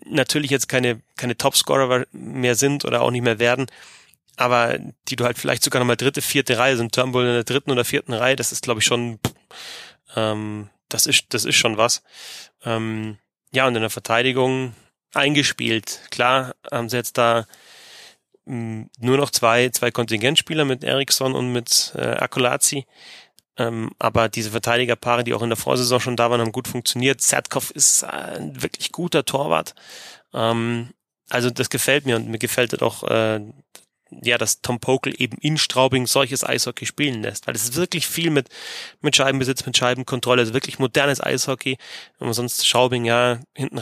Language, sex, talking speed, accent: German, male, 180 wpm, German